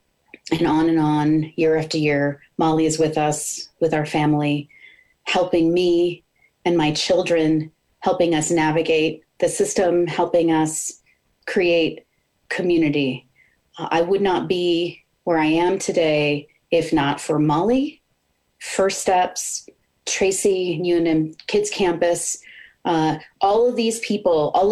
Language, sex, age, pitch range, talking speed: English, female, 30-49, 160-205 Hz, 130 wpm